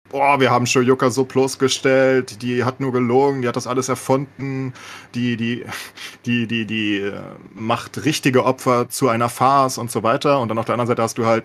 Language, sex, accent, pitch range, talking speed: German, male, German, 105-130 Hz, 200 wpm